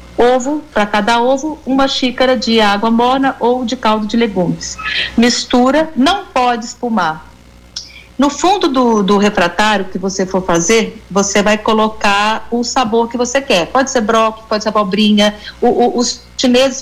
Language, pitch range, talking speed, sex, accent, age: Portuguese, 200-255 Hz, 155 wpm, female, Brazilian, 40-59